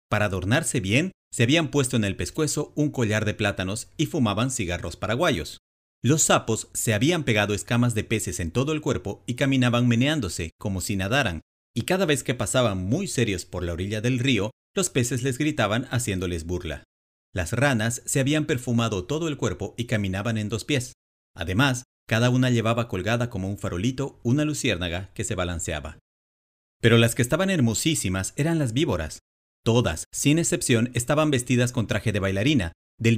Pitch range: 95-135 Hz